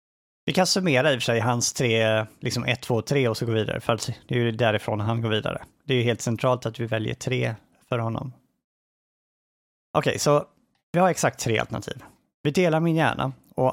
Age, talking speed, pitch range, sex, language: 30-49, 215 wpm, 115-145 Hz, male, Swedish